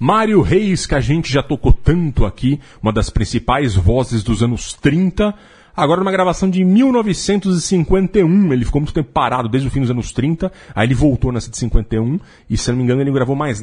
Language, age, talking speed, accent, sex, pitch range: Portuguese, 40-59, 205 wpm, Brazilian, male, 115-165 Hz